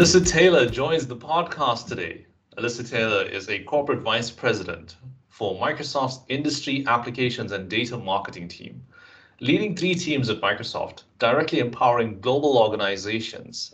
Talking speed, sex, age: 130 wpm, male, 30-49